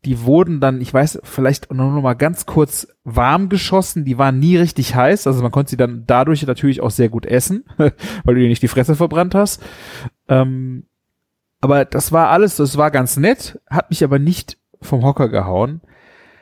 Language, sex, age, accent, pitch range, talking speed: German, male, 30-49, German, 125-160 Hz, 185 wpm